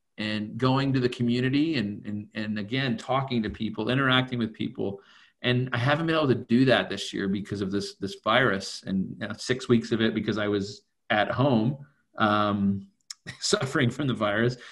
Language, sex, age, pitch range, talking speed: English, male, 40-59, 105-130 Hz, 185 wpm